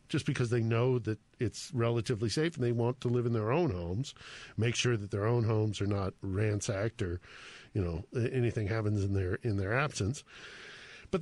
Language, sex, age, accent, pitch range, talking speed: English, male, 50-69, American, 105-130 Hz, 200 wpm